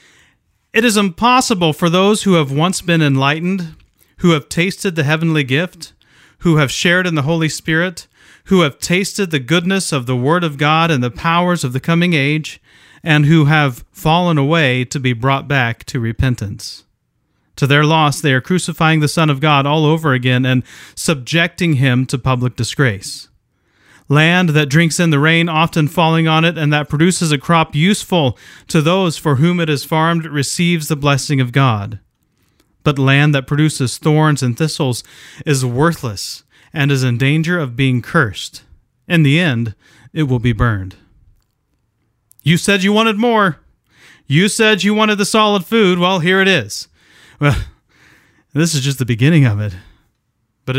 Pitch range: 130-170 Hz